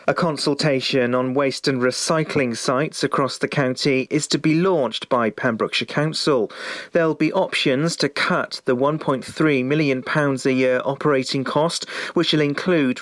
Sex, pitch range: male, 130-165 Hz